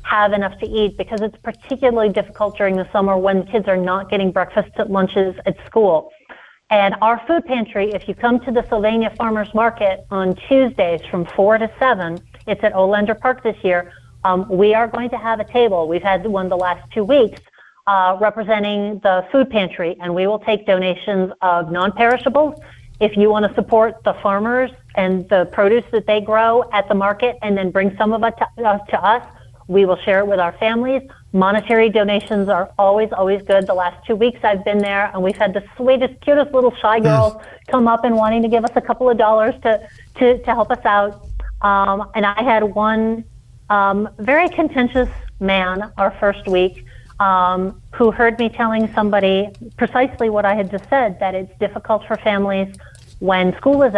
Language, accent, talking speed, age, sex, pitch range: English, American, 195 wpm, 40-59, female, 195-230 Hz